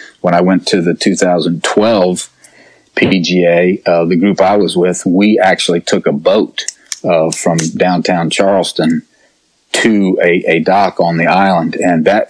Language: English